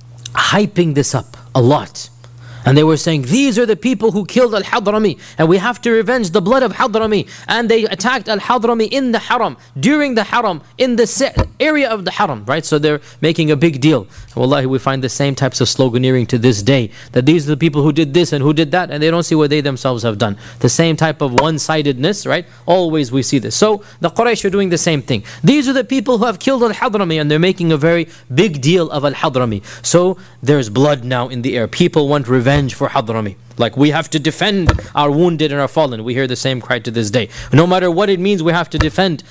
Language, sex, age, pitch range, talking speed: English, male, 20-39, 125-175 Hz, 235 wpm